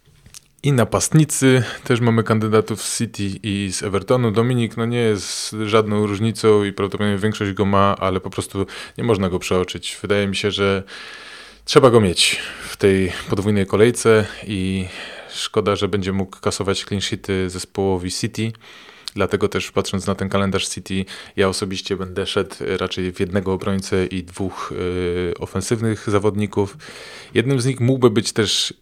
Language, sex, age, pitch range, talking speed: Polish, male, 20-39, 95-110 Hz, 155 wpm